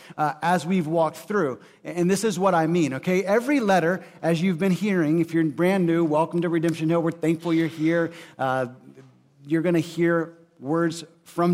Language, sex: English, male